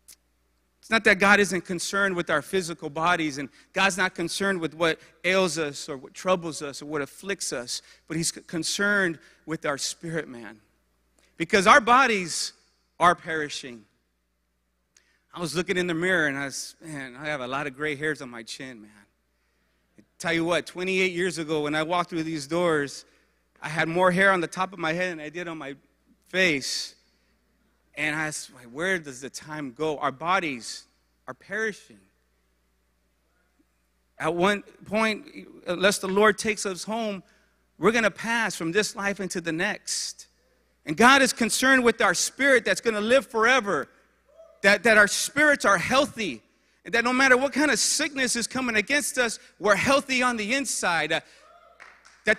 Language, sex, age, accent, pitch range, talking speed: English, male, 40-59, American, 150-215 Hz, 180 wpm